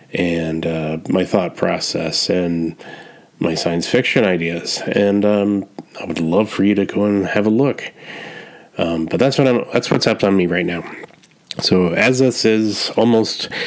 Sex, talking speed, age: male, 175 wpm, 30-49